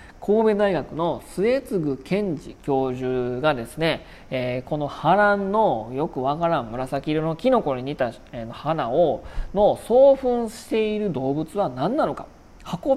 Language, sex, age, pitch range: Japanese, male, 40-59, 140-225 Hz